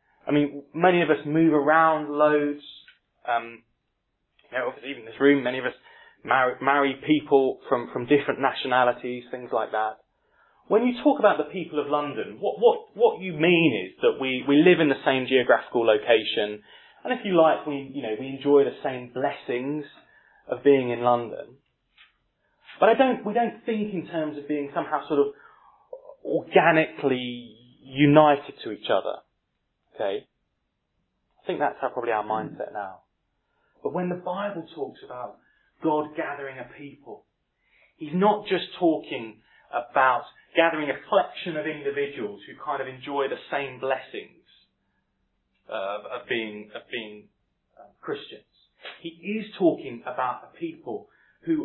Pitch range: 135-185 Hz